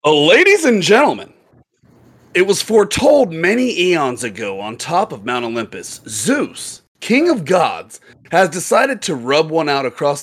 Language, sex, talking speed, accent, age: English, male, 155 wpm, American, 30-49